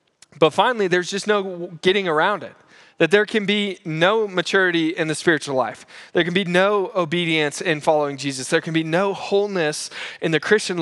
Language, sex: English, male